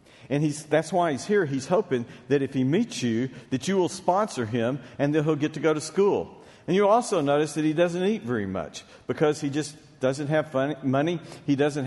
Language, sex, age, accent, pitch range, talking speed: English, male, 50-69, American, 140-200 Hz, 230 wpm